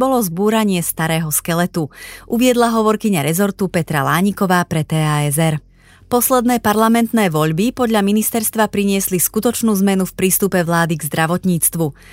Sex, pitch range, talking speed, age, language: female, 165-220 Hz, 120 wpm, 30-49, Slovak